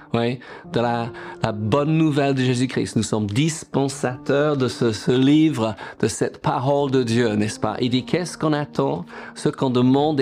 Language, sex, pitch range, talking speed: French, male, 120-155 Hz, 190 wpm